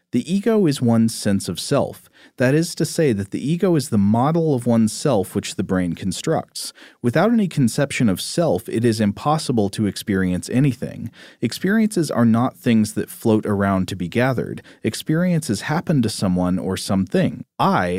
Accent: American